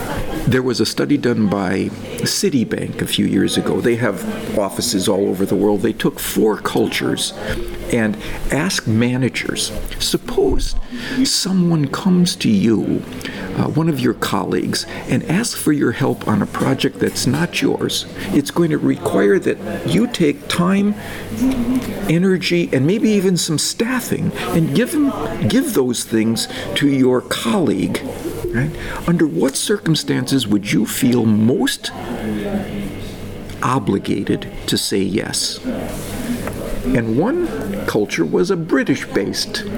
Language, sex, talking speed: English, male, 130 wpm